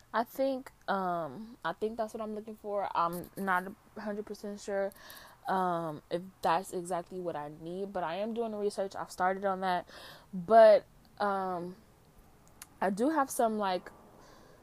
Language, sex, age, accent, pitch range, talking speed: English, female, 20-39, American, 185-230 Hz, 165 wpm